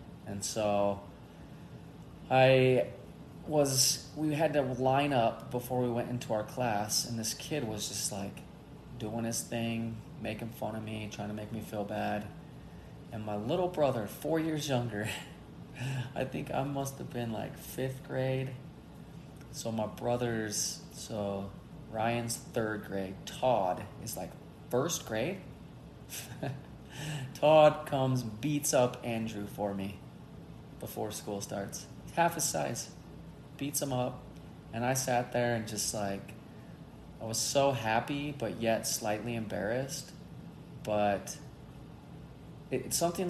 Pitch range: 105-130 Hz